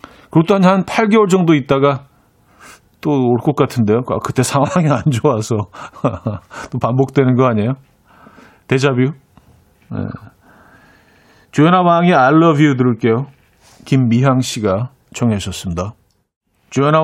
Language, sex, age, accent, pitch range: Korean, male, 40-59, native, 115-150 Hz